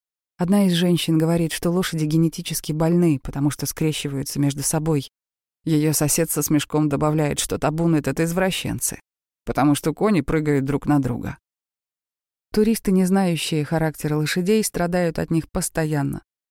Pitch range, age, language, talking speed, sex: 145-170 Hz, 30-49, Russian, 140 wpm, female